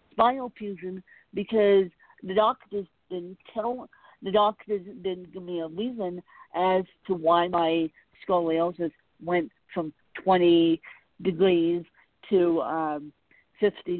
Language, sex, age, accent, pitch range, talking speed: English, female, 50-69, American, 170-200 Hz, 110 wpm